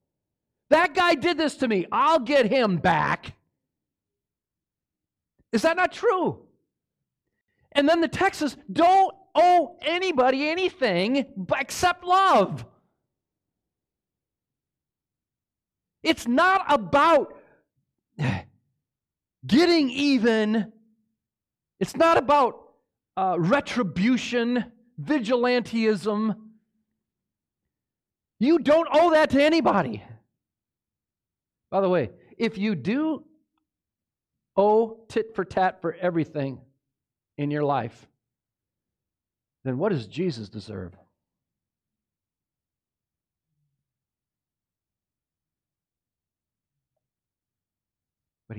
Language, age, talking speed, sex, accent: English, 40-59, 75 wpm, male, American